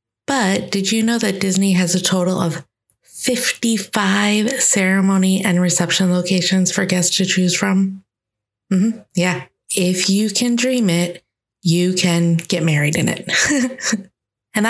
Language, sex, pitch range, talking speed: English, female, 175-205 Hz, 145 wpm